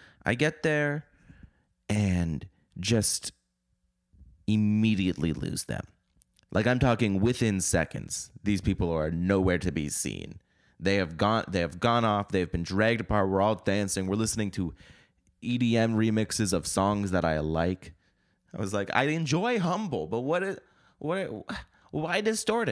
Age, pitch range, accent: 30-49, 85-120 Hz, American